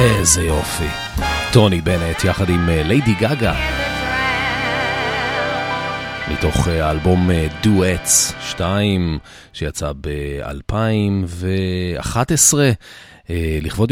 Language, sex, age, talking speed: Hebrew, male, 40-59, 65 wpm